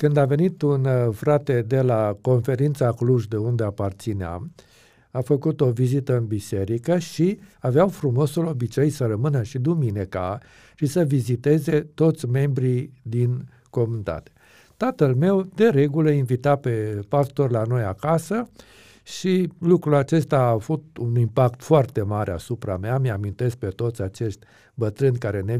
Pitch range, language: 115-150 Hz, Romanian